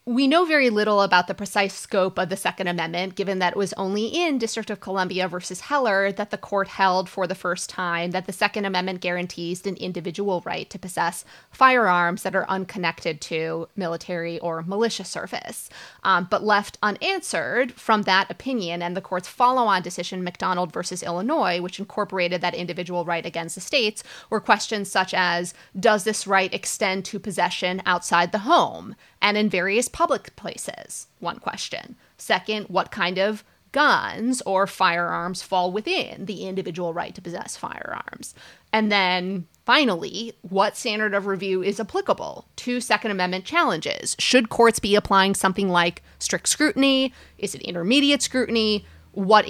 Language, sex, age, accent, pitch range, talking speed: English, female, 20-39, American, 180-215 Hz, 160 wpm